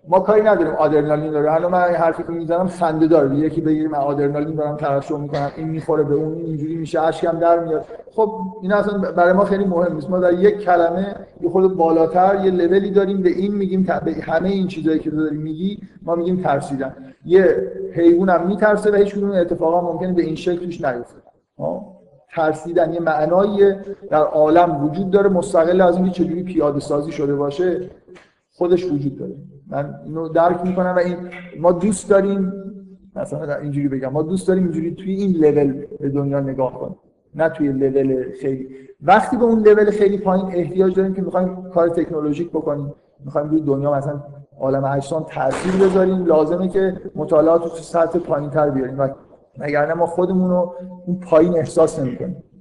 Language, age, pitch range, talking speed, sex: Persian, 50-69, 150-185 Hz, 175 wpm, male